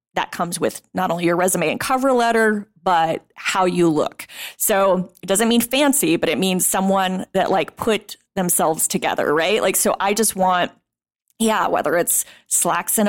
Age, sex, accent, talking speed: 30-49, female, American, 180 wpm